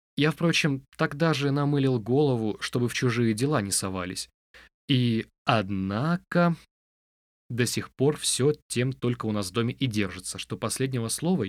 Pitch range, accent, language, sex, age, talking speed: 100-130 Hz, native, Russian, male, 20-39, 150 wpm